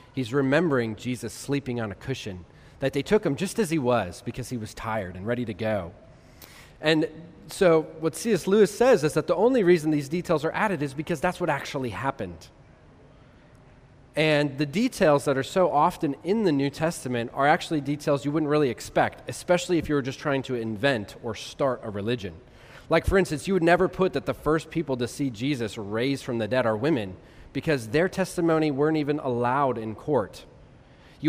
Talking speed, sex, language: 200 wpm, male, English